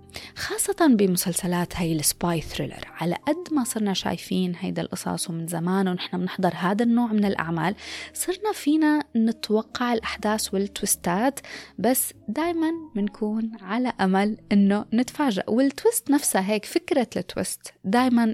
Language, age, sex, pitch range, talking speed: Arabic, 20-39, female, 175-255 Hz, 125 wpm